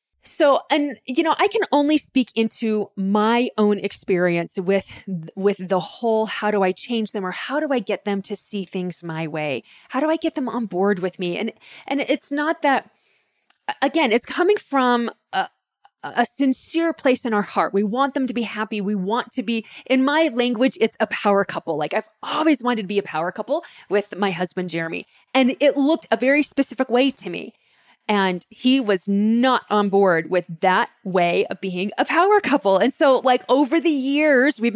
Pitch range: 195-260 Hz